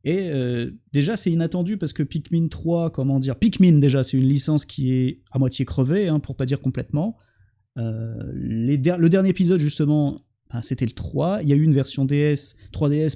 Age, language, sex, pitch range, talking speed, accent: 20-39, French, male, 125-155 Hz, 210 wpm, French